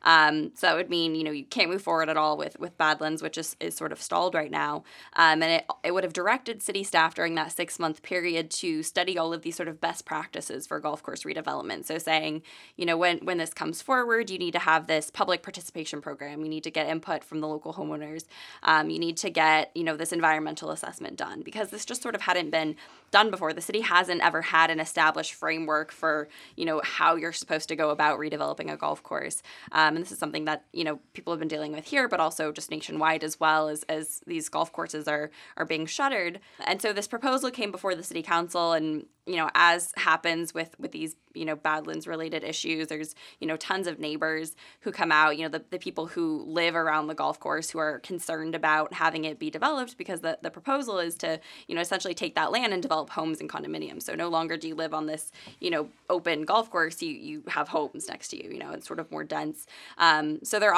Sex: female